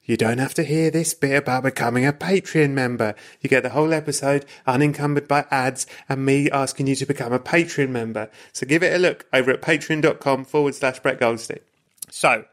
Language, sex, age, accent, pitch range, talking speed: English, male, 30-49, British, 125-150 Hz, 200 wpm